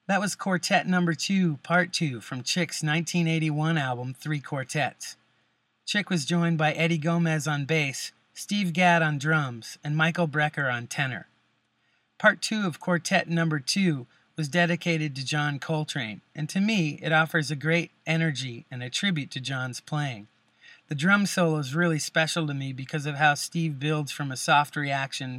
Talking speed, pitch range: 170 wpm, 140-170 Hz